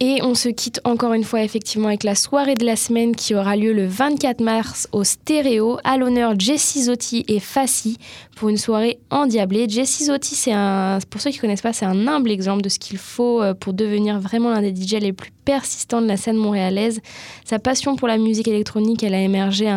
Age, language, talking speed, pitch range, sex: 10-29, French, 220 wpm, 195-240 Hz, female